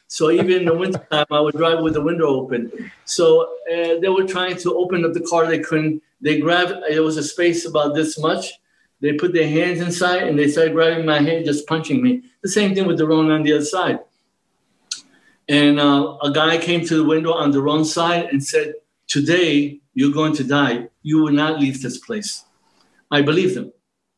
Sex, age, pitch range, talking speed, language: male, 60-79, 150-185 Hz, 215 wpm, English